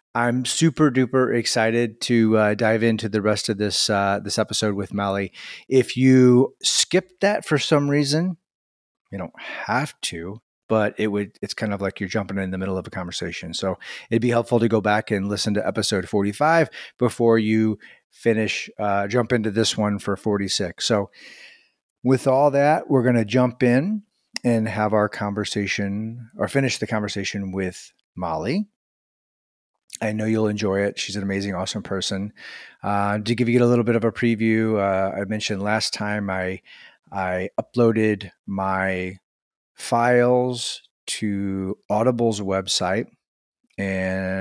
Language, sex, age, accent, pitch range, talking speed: English, male, 30-49, American, 100-120 Hz, 160 wpm